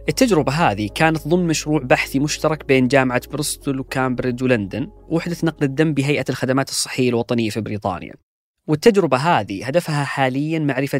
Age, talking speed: 20-39, 140 wpm